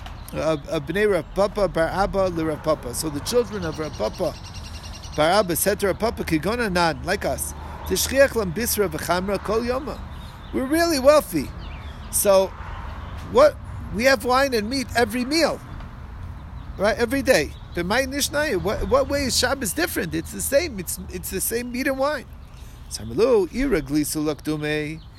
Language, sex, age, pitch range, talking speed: English, male, 50-69, 135-210 Hz, 155 wpm